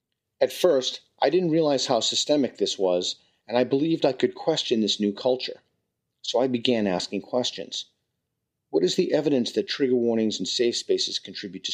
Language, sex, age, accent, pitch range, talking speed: English, male, 40-59, American, 100-140 Hz, 180 wpm